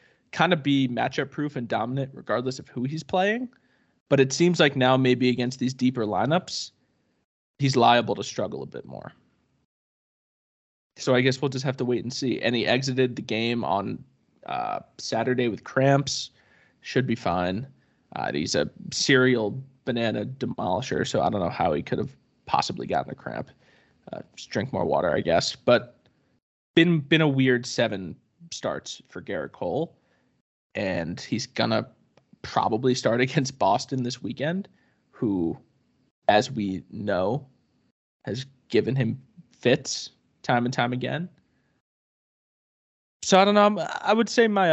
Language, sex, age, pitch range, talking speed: English, male, 20-39, 120-145 Hz, 155 wpm